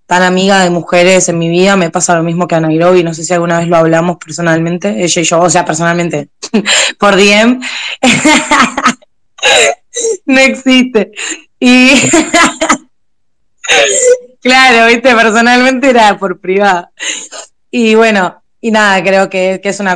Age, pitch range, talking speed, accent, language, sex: 20-39, 175-205 Hz, 150 wpm, Argentinian, Spanish, female